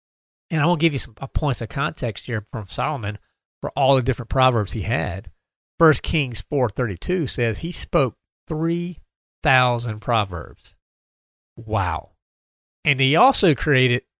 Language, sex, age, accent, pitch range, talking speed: English, male, 40-59, American, 110-155 Hz, 140 wpm